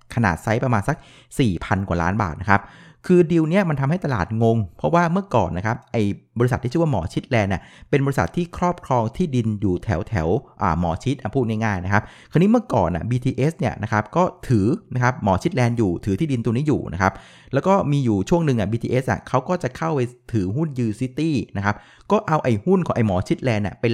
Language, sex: Thai, male